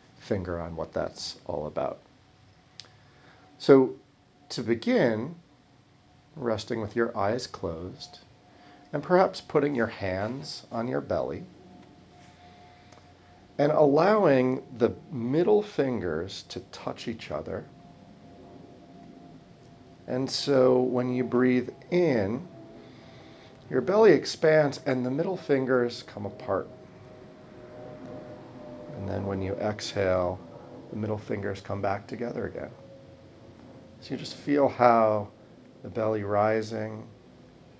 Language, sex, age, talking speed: English, male, 40-59, 105 wpm